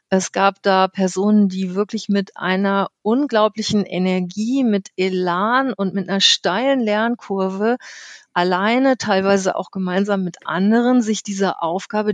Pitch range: 190-225 Hz